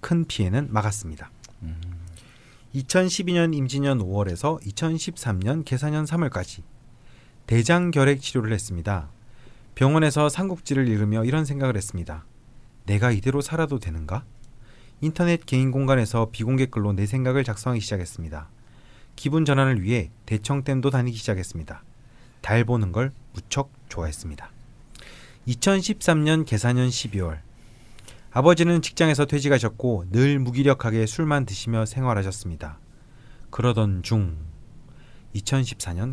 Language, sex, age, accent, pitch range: Korean, male, 40-59, native, 110-140 Hz